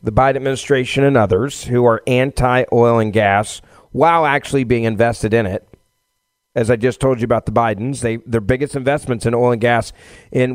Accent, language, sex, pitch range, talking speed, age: American, English, male, 125-155 Hz, 195 wpm, 40-59